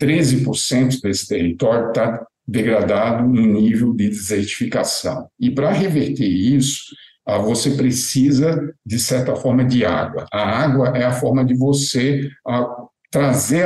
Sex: male